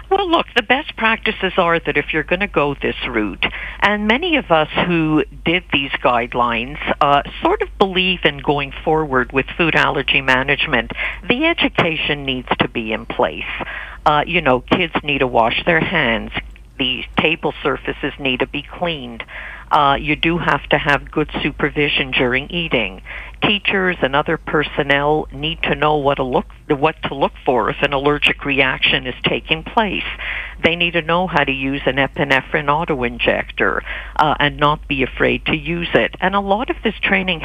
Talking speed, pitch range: 170 wpm, 140-175 Hz